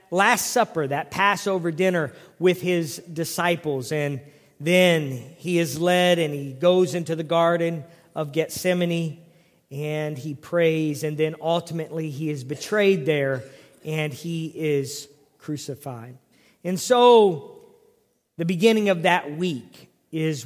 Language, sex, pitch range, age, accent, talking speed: English, male, 160-195 Hz, 40-59, American, 125 wpm